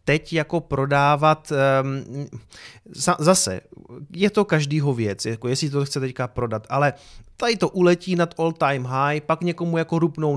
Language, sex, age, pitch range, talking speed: Czech, male, 30-49, 135-165 Hz, 155 wpm